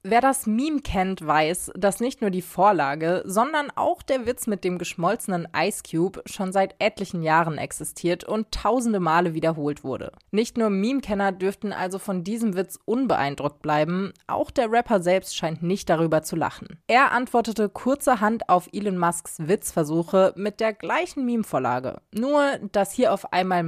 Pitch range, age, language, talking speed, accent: 170-220 Hz, 20-39, German, 160 wpm, German